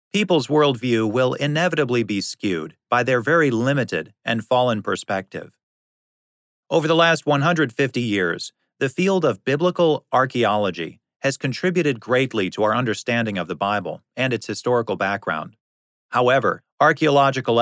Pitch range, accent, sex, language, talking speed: 110-150 Hz, American, male, English, 130 wpm